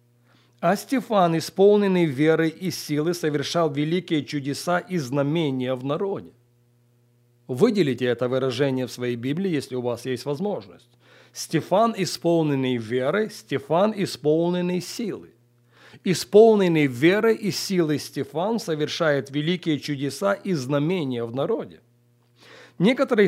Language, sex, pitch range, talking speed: English, male, 125-175 Hz, 110 wpm